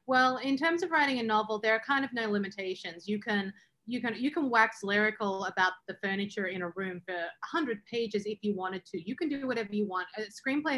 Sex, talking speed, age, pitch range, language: female, 235 wpm, 30-49, 190-225 Hz, English